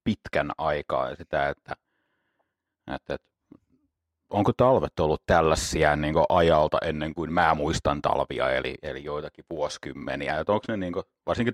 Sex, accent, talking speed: male, native, 150 wpm